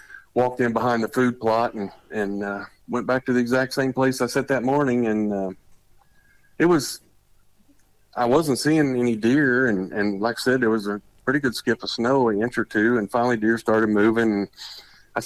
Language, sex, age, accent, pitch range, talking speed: English, male, 50-69, American, 105-130 Hz, 210 wpm